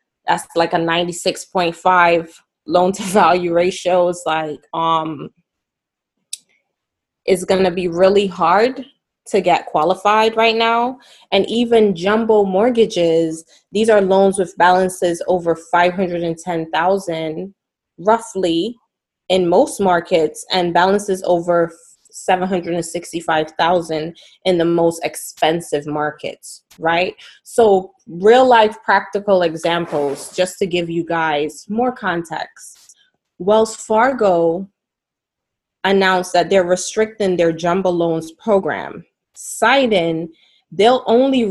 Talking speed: 105 wpm